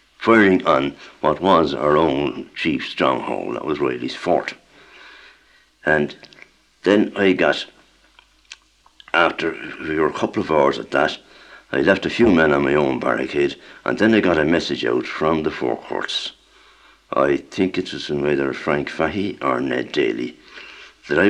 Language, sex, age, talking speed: English, male, 60-79, 160 wpm